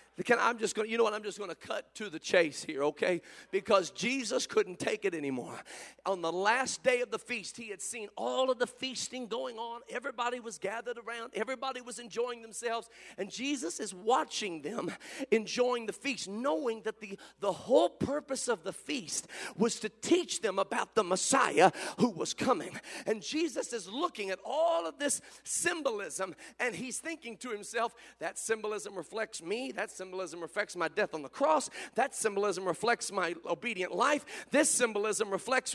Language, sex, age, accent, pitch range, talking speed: English, male, 40-59, American, 220-335 Hz, 185 wpm